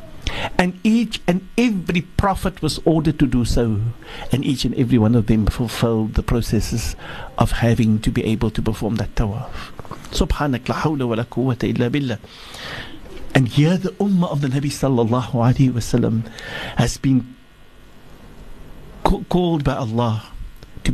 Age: 60-79